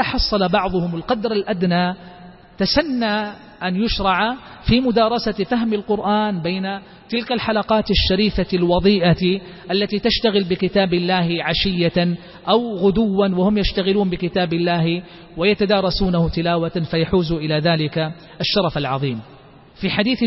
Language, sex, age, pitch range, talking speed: Arabic, male, 40-59, 170-225 Hz, 105 wpm